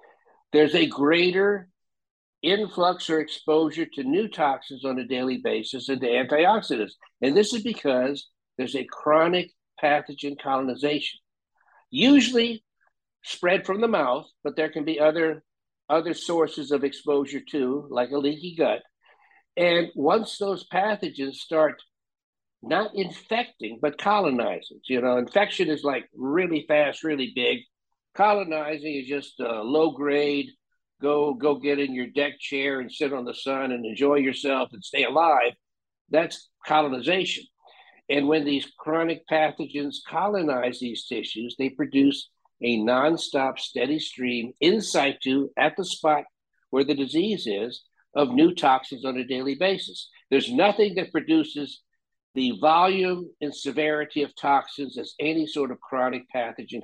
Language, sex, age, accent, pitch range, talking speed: English, male, 60-79, American, 135-165 Hz, 140 wpm